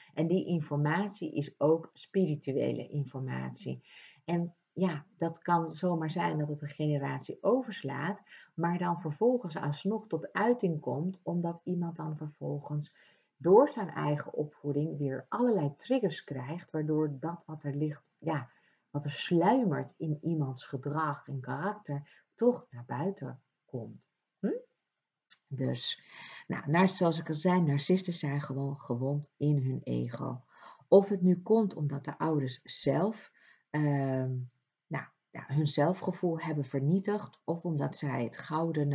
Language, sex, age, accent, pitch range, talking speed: Dutch, female, 50-69, Dutch, 140-175 Hz, 135 wpm